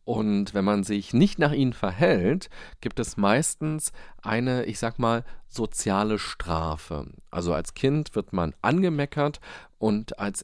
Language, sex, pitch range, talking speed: German, male, 80-135 Hz, 145 wpm